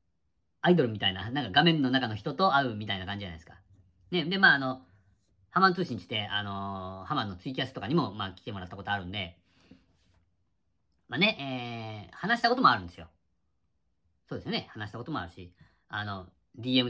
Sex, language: female, Japanese